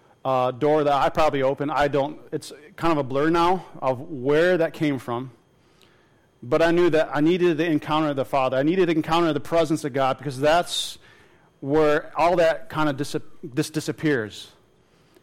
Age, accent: 40-59, American